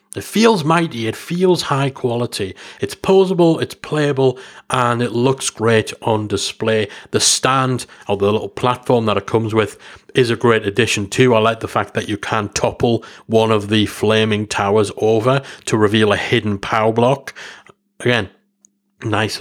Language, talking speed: English, 165 wpm